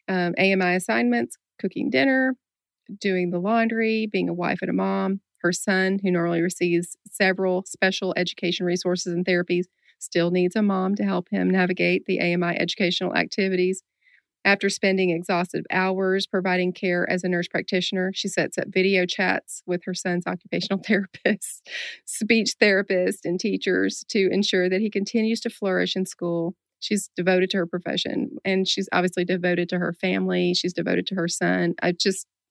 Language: English